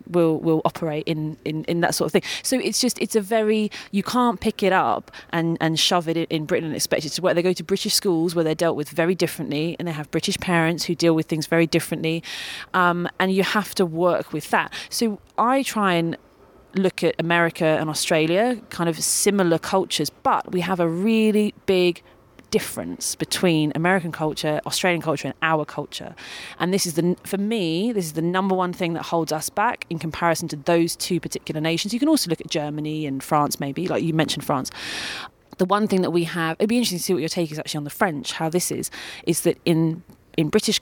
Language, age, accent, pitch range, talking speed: English, 30-49, British, 155-185 Hz, 225 wpm